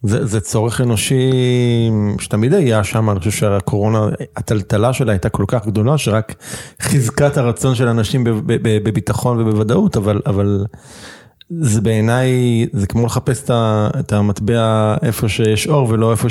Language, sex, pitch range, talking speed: Hebrew, male, 105-125 Hz, 150 wpm